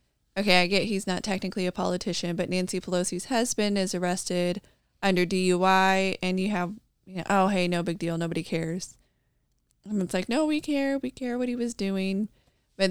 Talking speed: 180 wpm